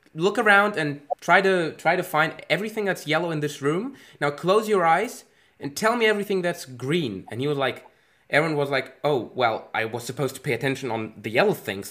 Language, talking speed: English, 215 wpm